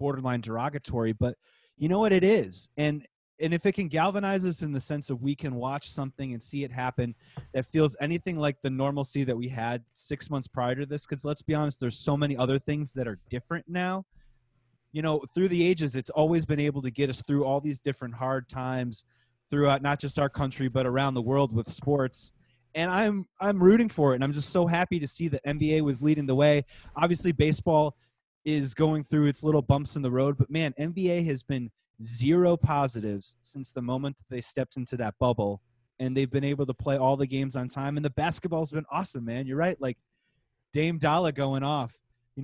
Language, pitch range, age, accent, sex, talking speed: English, 130-155 Hz, 30-49, American, male, 220 wpm